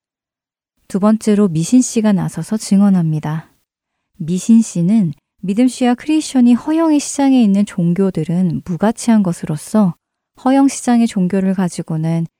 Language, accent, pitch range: Korean, native, 175-235 Hz